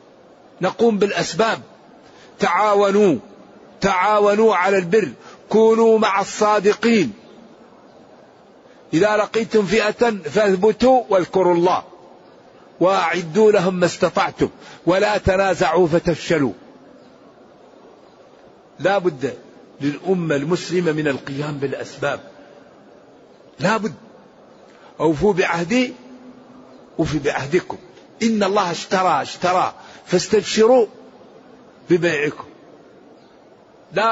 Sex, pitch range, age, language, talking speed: male, 180-225 Hz, 50-69, Arabic, 75 wpm